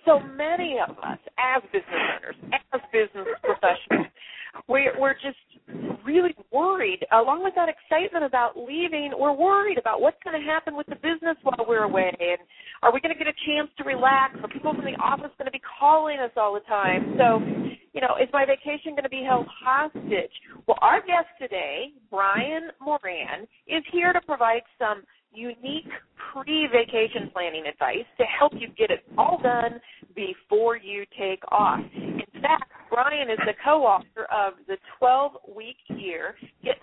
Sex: female